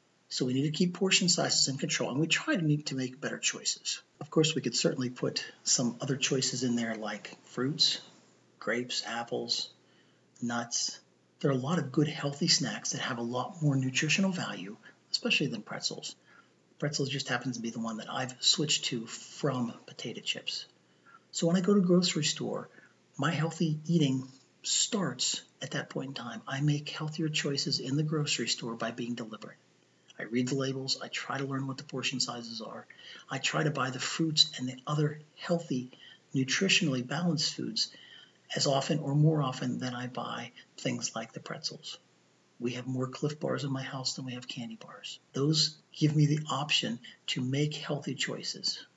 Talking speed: 190 wpm